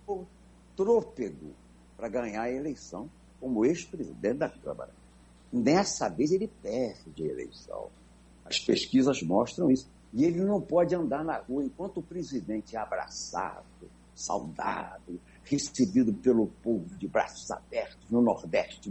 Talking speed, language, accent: 125 wpm, Portuguese, Brazilian